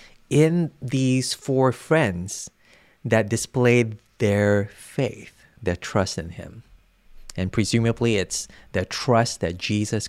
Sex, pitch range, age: male, 100-130 Hz, 20-39